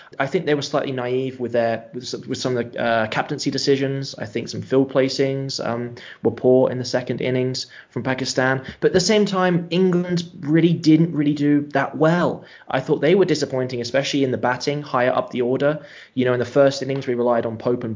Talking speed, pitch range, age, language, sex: 215 wpm, 120-145 Hz, 20-39, English, male